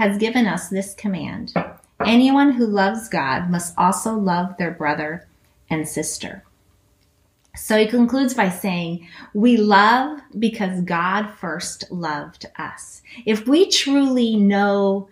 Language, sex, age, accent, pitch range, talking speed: English, female, 30-49, American, 175-225 Hz, 125 wpm